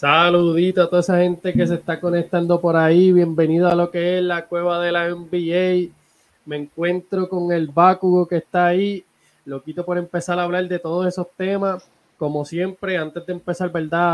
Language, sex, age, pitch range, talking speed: Spanish, male, 20-39, 145-180 Hz, 190 wpm